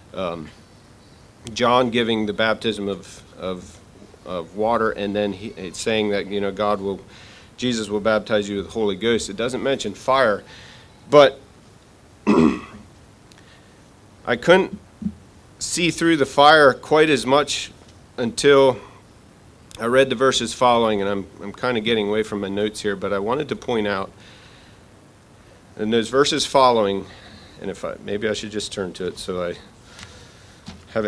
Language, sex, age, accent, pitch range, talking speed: English, male, 40-59, American, 105-145 Hz, 155 wpm